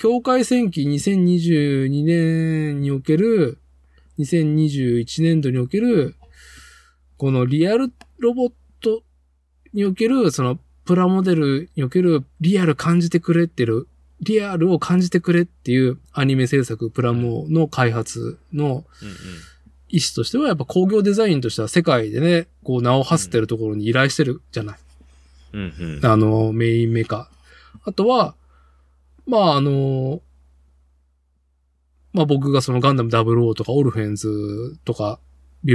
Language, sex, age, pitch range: Japanese, male, 20-39, 95-150 Hz